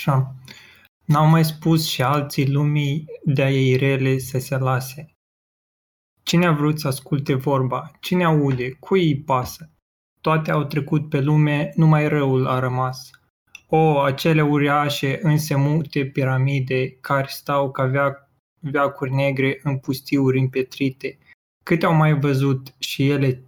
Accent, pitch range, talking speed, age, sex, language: native, 135-155 Hz, 135 wpm, 20-39, male, Romanian